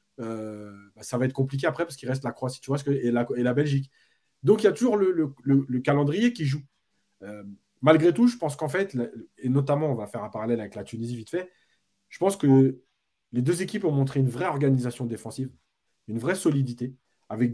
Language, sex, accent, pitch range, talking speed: French, male, French, 120-145 Hz, 225 wpm